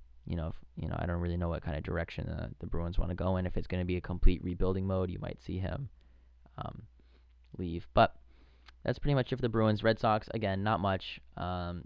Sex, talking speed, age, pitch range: male, 250 wpm, 20-39, 80-100 Hz